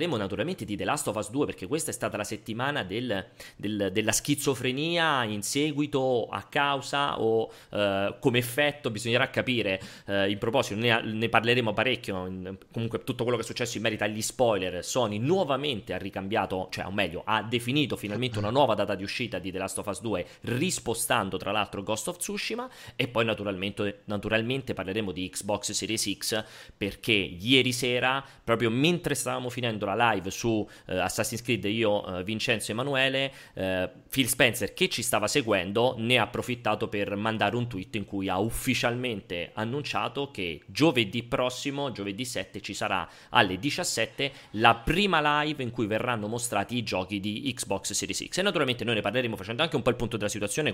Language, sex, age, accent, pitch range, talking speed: Italian, male, 30-49, native, 100-130 Hz, 180 wpm